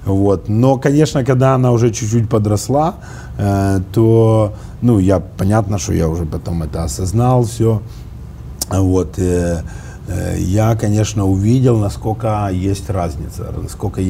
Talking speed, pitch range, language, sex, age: 130 wpm, 95-120 Hz, Russian, male, 30-49